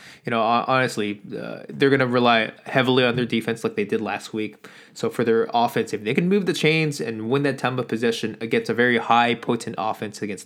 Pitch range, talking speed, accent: 110-140 Hz, 230 wpm, American